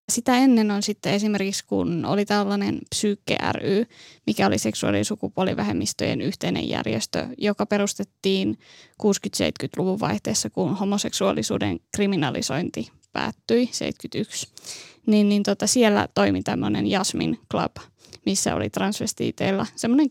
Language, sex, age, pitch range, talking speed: Finnish, female, 20-39, 175-215 Hz, 105 wpm